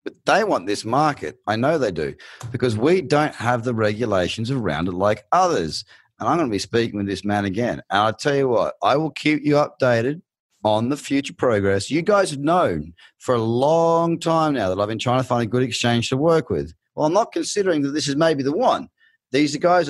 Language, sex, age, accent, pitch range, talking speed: English, male, 30-49, Australian, 110-145 Hz, 230 wpm